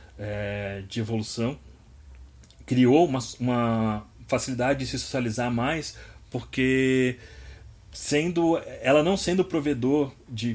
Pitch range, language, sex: 115-135 Hz, English, male